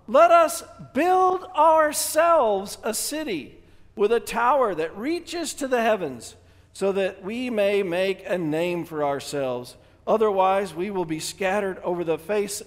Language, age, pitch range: English, 50-69, 110-170 Hz